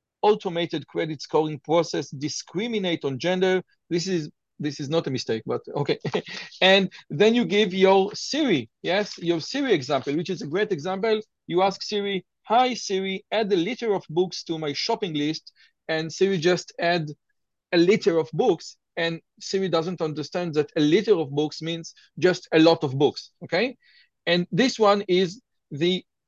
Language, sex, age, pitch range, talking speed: Hebrew, male, 40-59, 160-210 Hz, 170 wpm